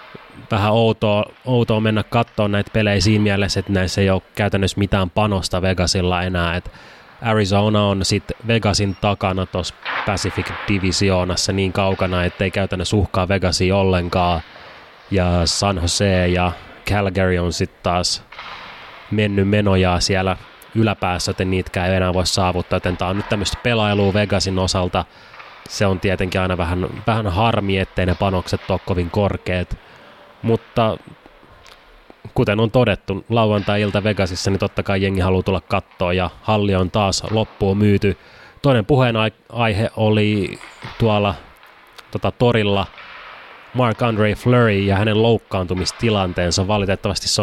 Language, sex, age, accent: Finnish, male, 20-39, native